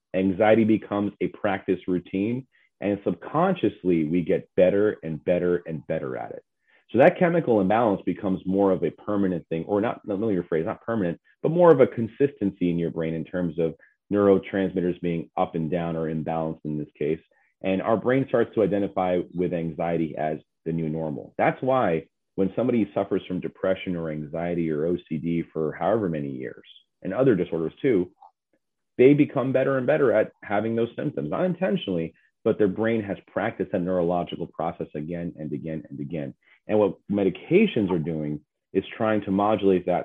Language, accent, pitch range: English, American, 80-105 Hz